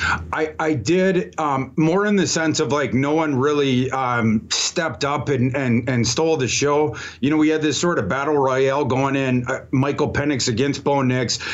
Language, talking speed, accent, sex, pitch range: English, 205 wpm, American, male, 125-150 Hz